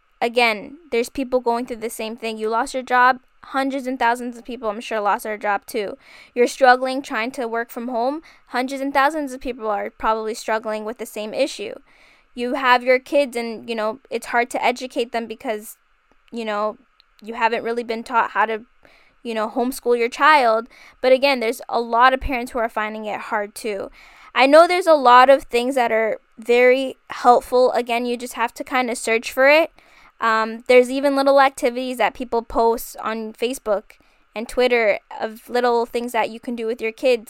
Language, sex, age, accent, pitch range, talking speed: English, female, 10-29, American, 225-260 Hz, 200 wpm